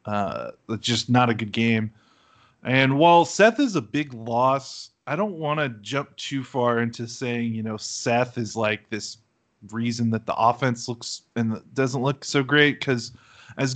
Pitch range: 110-135 Hz